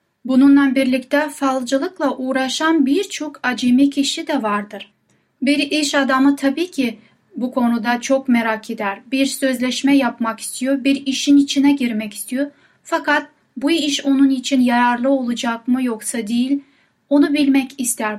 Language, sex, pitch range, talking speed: Turkish, female, 245-285 Hz, 135 wpm